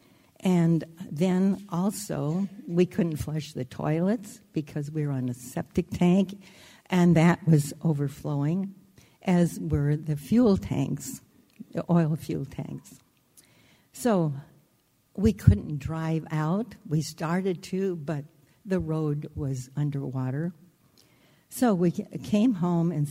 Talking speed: 120 wpm